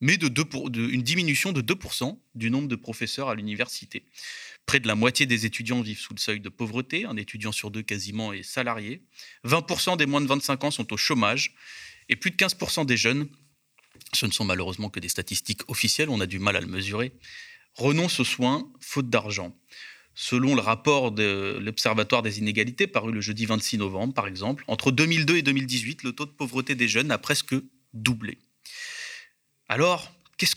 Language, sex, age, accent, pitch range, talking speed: French, male, 30-49, French, 110-145 Hz, 185 wpm